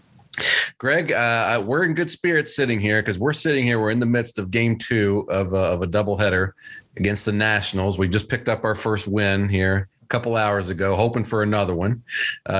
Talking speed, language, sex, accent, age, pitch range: 210 wpm, English, male, American, 40-59, 95-115 Hz